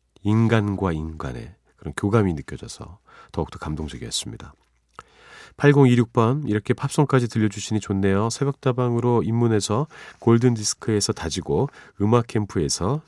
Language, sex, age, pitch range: Korean, male, 40-59, 90-135 Hz